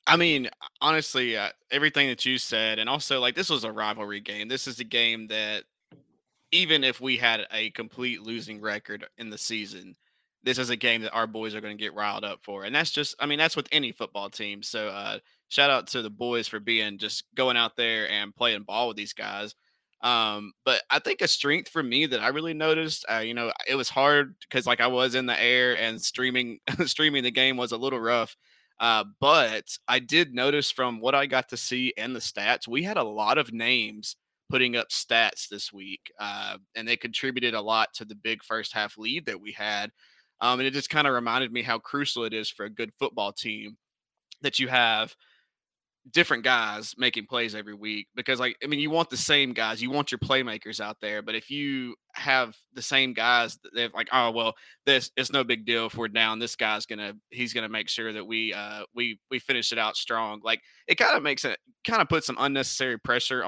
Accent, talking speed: American, 225 wpm